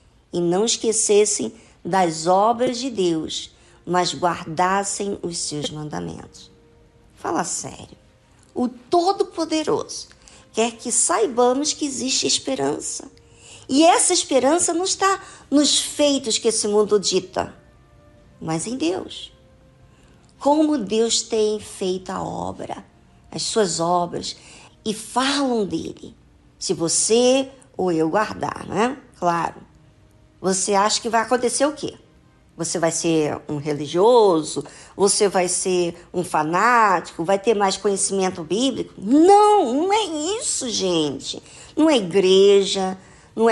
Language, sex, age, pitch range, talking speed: Portuguese, male, 50-69, 180-285 Hz, 120 wpm